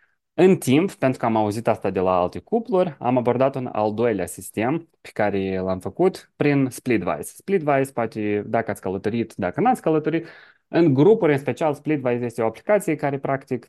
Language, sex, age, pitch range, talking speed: Romanian, male, 20-39, 105-155 Hz, 185 wpm